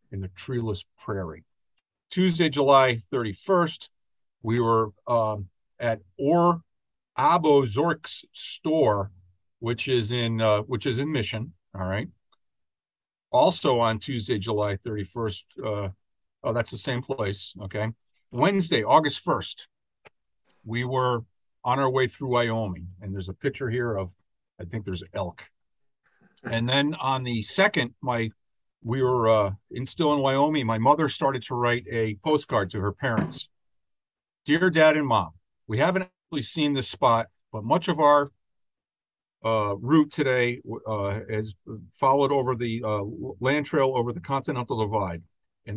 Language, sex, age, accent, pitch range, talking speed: English, male, 50-69, American, 100-135 Hz, 145 wpm